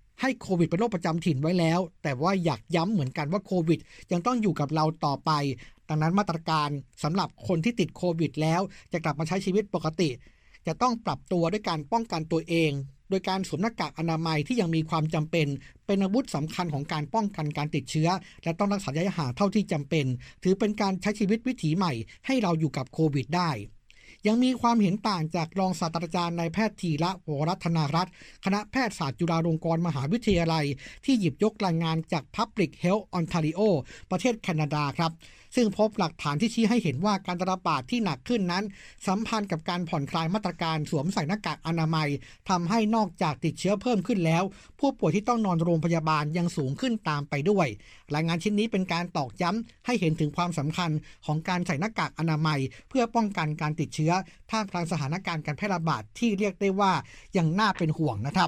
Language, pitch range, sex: Thai, 155-200 Hz, male